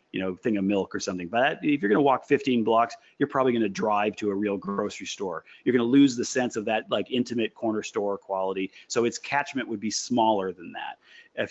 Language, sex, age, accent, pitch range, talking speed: English, male, 30-49, American, 105-130 Hz, 245 wpm